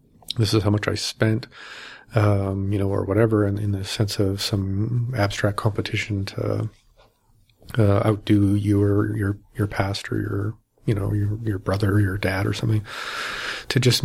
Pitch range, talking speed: 100-115 Hz, 185 wpm